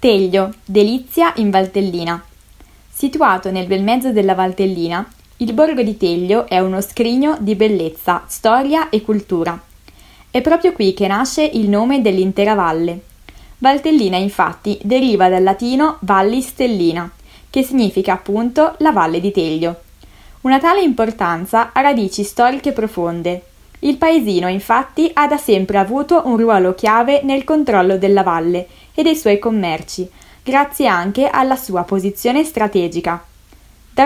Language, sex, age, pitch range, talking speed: Italian, female, 20-39, 185-260 Hz, 135 wpm